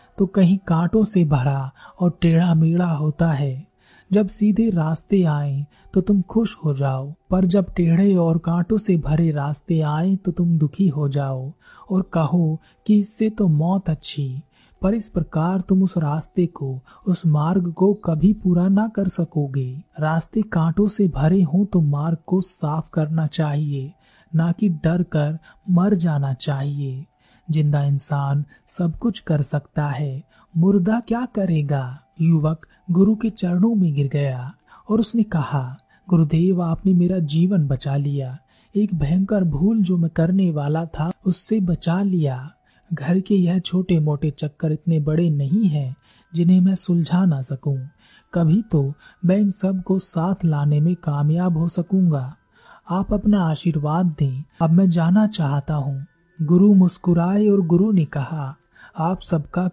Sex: male